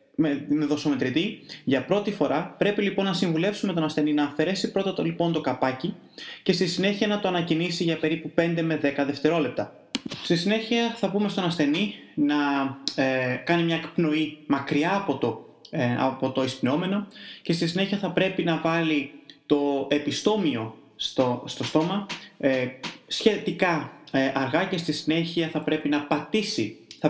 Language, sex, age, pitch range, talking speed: Greek, male, 20-39, 145-185 Hz, 160 wpm